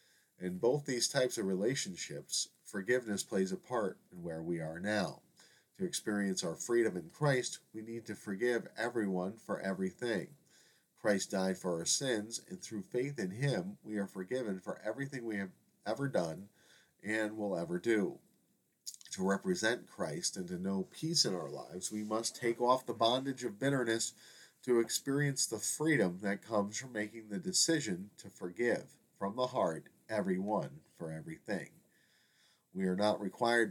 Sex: male